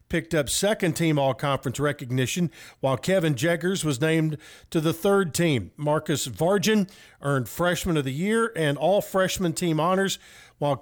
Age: 50-69